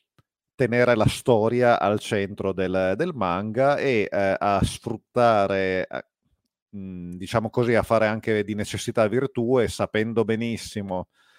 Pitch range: 95-115 Hz